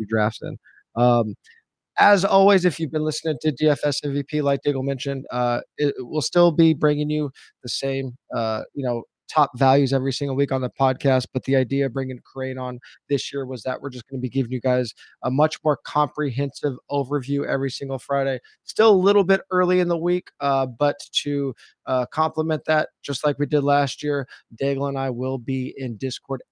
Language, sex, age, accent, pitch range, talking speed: English, male, 20-39, American, 125-150 Hz, 200 wpm